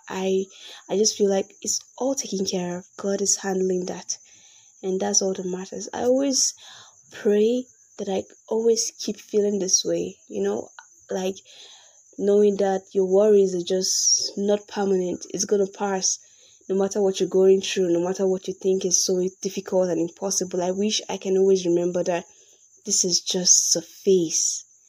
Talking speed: 175 wpm